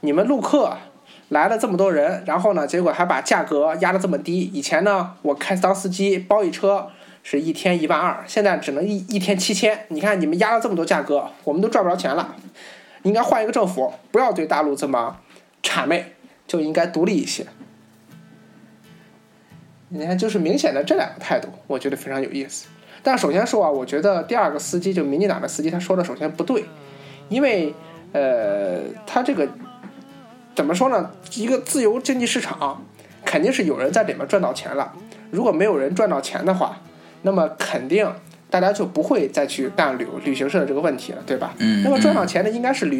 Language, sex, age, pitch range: Chinese, male, 20-39, 160-215 Hz